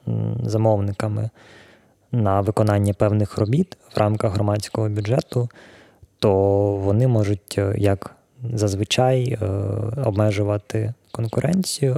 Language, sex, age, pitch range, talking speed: Ukrainian, male, 20-39, 105-120 Hz, 80 wpm